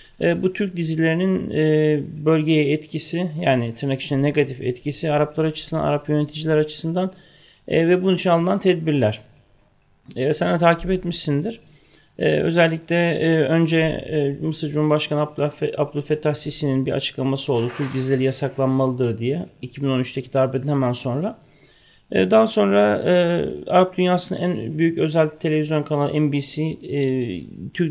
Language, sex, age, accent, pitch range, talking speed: Turkish, male, 30-49, native, 135-170 Hz, 115 wpm